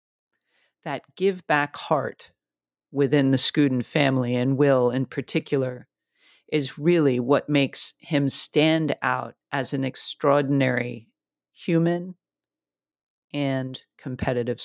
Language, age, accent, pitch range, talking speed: English, 40-59, American, 125-155 Hz, 100 wpm